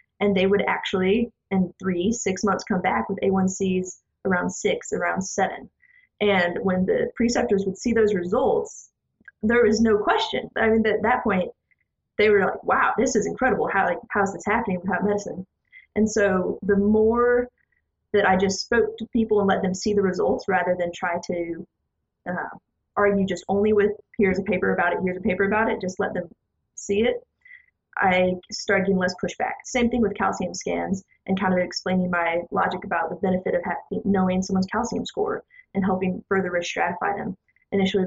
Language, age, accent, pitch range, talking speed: English, 20-39, American, 185-220 Hz, 190 wpm